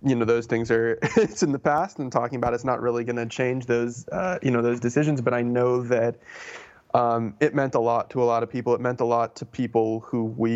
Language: English